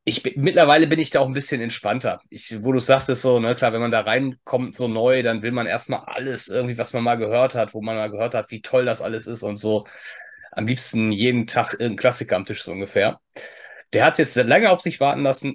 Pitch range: 115-155 Hz